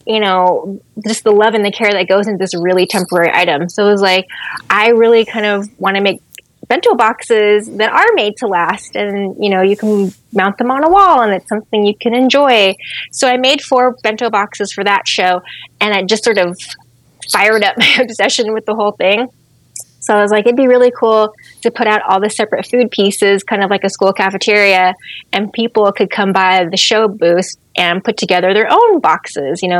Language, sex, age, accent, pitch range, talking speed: English, female, 20-39, American, 185-230 Hz, 220 wpm